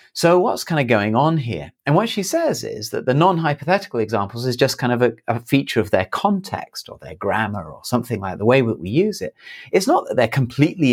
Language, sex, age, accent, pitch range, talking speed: English, male, 30-49, British, 100-140 Hz, 240 wpm